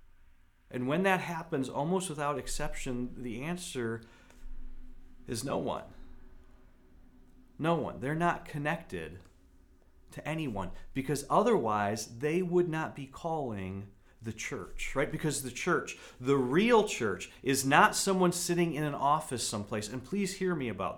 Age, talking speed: 40-59, 135 wpm